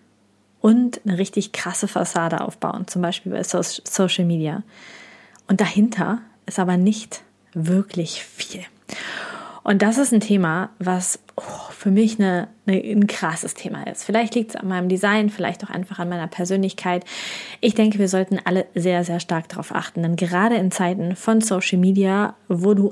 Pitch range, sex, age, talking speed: 180-215 Hz, female, 20-39, 160 wpm